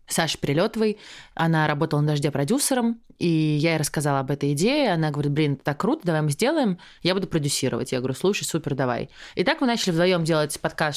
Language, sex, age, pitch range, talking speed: Russian, female, 20-39, 150-195 Hz, 205 wpm